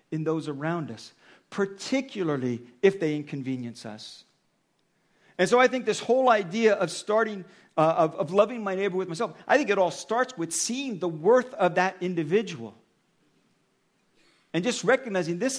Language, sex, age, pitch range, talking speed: English, male, 50-69, 170-240 Hz, 160 wpm